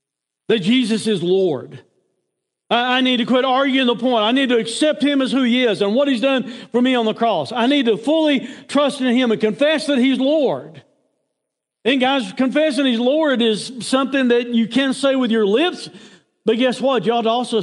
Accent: American